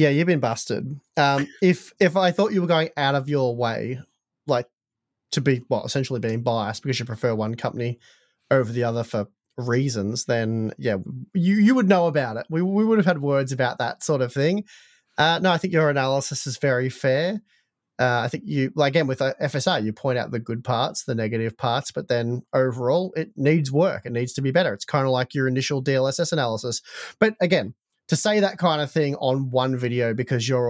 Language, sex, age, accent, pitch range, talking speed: English, male, 30-49, Australian, 120-150 Hz, 215 wpm